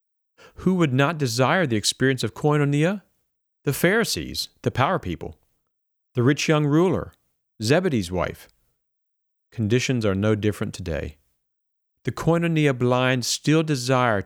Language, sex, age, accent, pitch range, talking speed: English, male, 50-69, American, 95-140 Hz, 120 wpm